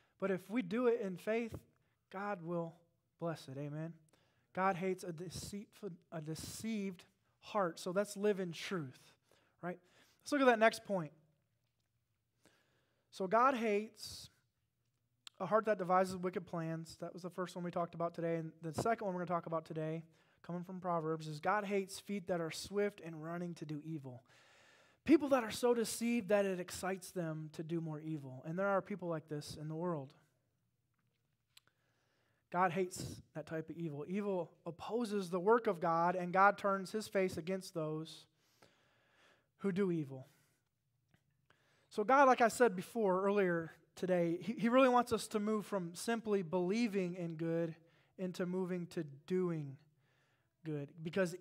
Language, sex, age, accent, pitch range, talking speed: English, male, 20-39, American, 155-200 Hz, 165 wpm